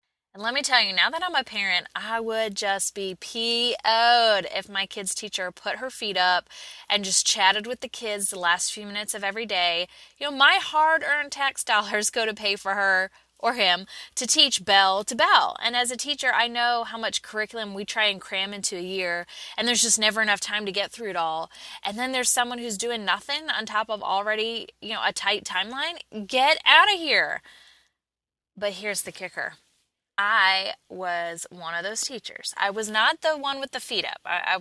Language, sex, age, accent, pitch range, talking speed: English, female, 20-39, American, 190-240 Hz, 210 wpm